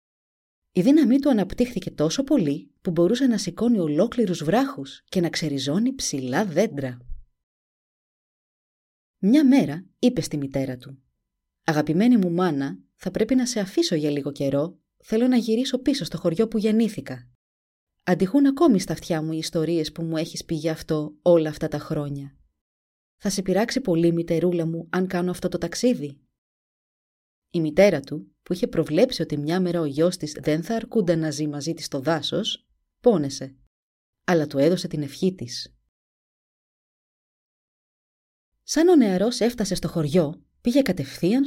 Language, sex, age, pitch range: Greek, female, 30-49, 145-215 Hz